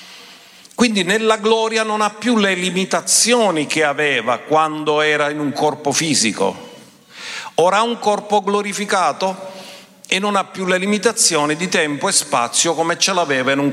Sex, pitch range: male, 145-205 Hz